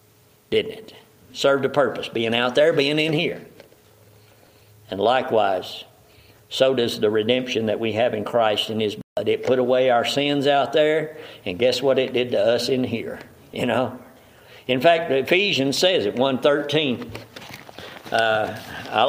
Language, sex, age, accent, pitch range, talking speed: English, male, 60-79, American, 130-175 Hz, 160 wpm